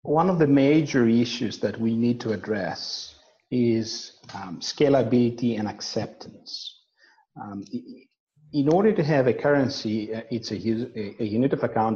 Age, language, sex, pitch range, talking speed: 50-69, English, male, 115-140 Hz, 145 wpm